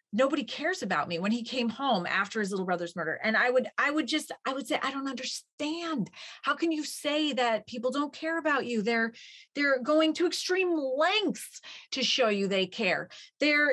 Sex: female